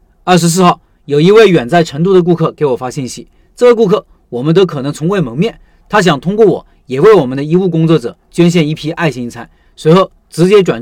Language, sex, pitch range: Chinese, male, 145-195 Hz